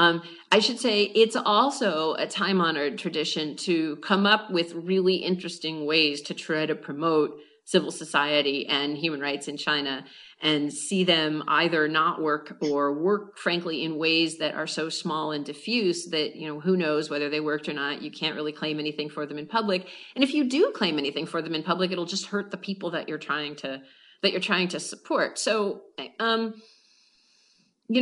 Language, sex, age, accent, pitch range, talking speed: English, female, 40-59, American, 155-200 Hz, 195 wpm